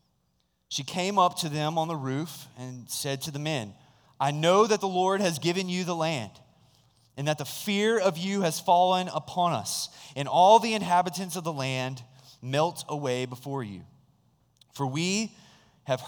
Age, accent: 20-39, American